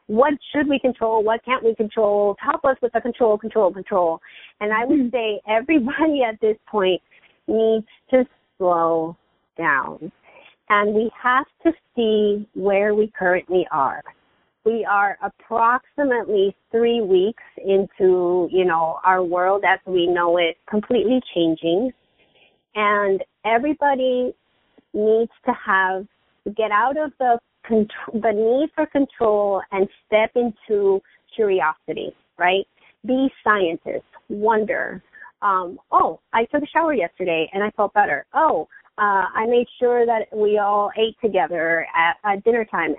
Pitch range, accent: 190-245 Hz, American